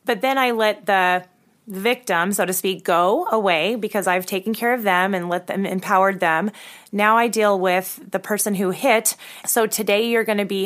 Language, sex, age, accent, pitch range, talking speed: English, female, 20-39, American, 185-220 Hz, 205 wpm